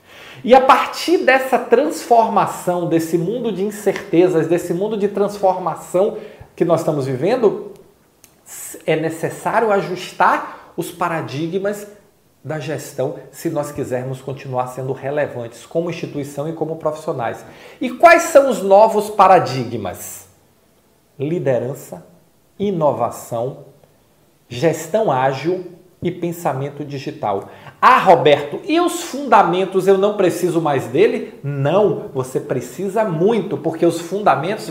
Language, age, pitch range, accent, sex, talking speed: Portuguese, 40-59, 140-200 Hz, Brazilian, male, 110 wpm